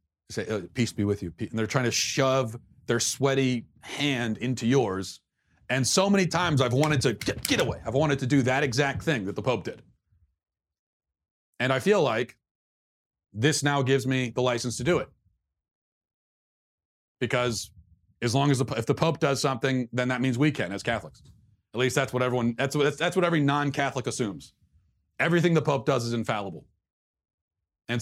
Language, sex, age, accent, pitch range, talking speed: English, male, 40-59, American, 110-150 Hz, 180 wpm